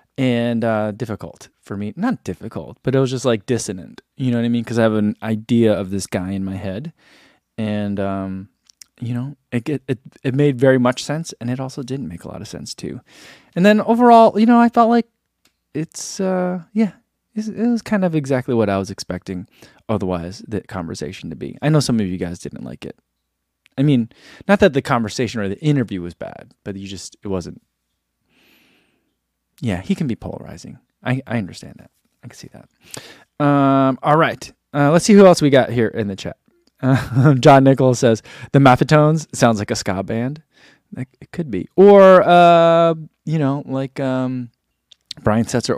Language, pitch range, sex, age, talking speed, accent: English, 105-150 Hz, male, 20-39, 195 wpm, American